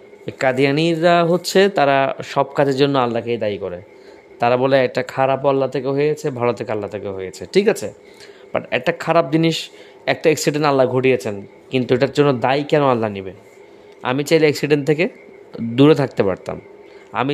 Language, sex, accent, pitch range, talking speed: Bengali, male, native, 115-160 Hz, 120 wpm